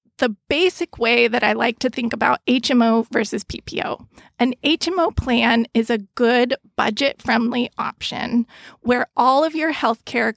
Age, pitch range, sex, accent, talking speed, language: 20-39, 230-260 Hz, female, American, 150 wpm, English